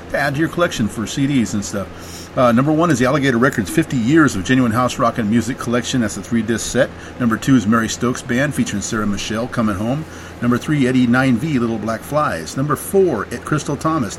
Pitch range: 100-130 Hz